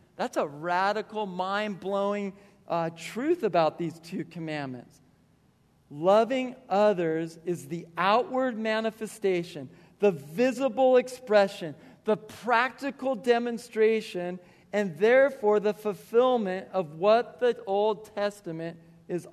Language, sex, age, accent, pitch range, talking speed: English, male, 40-59, American, 175-230 Hz, 95 wpm